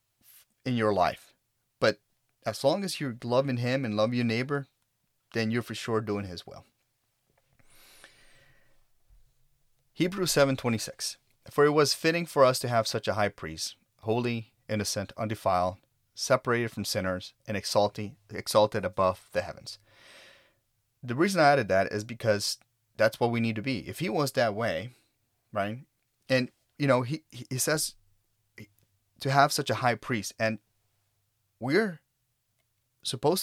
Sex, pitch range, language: male, 105-130 Hz, English